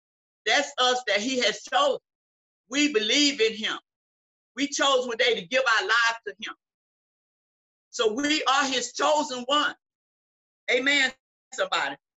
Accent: American